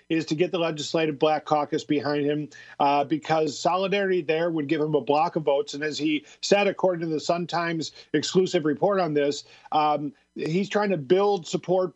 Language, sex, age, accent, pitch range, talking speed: English, male, 50-69, American, 150-185 Hz, 190 wpm